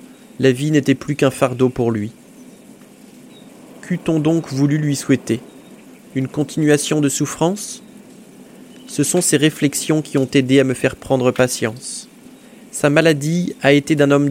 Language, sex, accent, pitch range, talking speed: French, male, French, 135-175 Hz, 145 wpm